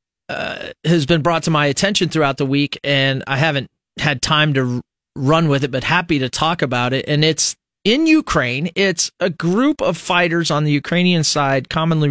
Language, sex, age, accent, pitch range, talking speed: English, male, 40-59, American, 130-165 Hz, 195 wpm